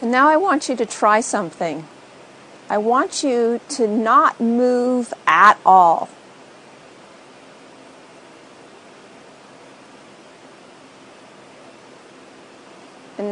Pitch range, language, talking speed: 190-250 Hz, English, 75 wpm